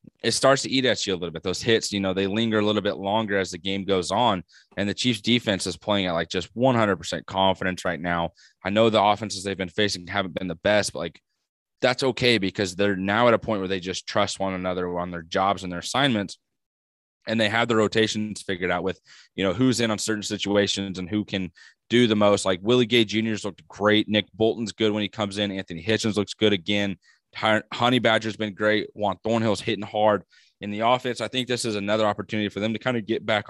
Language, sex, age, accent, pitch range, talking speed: English, male, 20-39, American, 95-110 Hz, 240 wpm